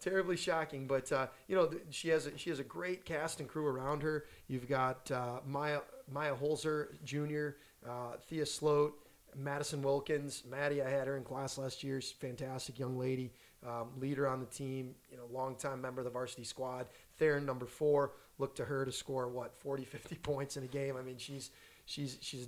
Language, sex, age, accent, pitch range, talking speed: English, male, 20-39, American, 130-150 Hz, 205 wpm